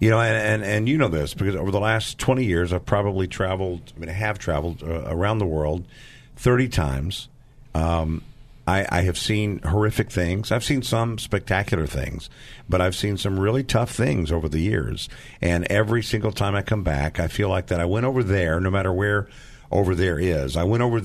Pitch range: 95-125 Hz